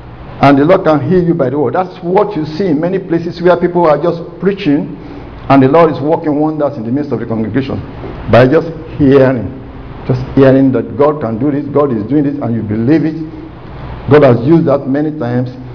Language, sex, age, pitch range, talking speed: English, male, 50-69, 130-170 Hz, 215 wpm